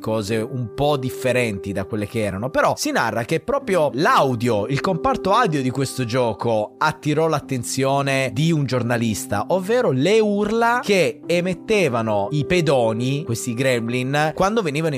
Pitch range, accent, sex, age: 100-145 Hz, native, male, 20-39